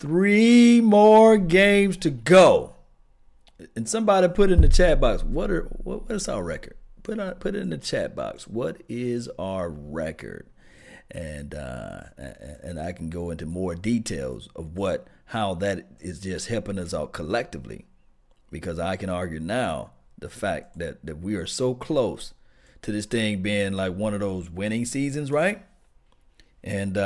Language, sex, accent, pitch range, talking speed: English, male, American, 95-130 Hz, 160 wpm